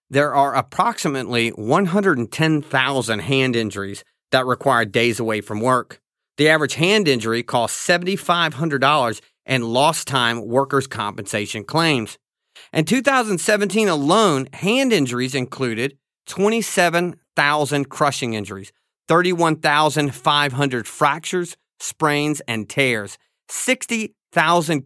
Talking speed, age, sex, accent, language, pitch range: 95 wpm, 40-59, male, American, English, 125-175 Hz